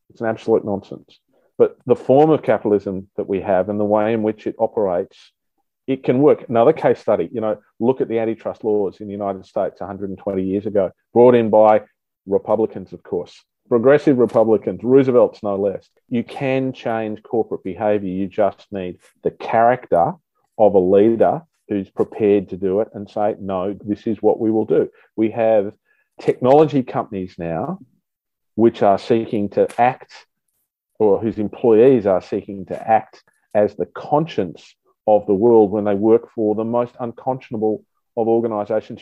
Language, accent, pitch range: English, Australian, 100-115 Hz